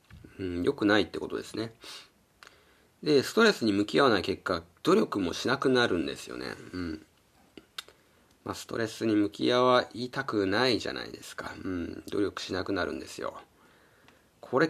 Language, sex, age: Japanese, male, 40-59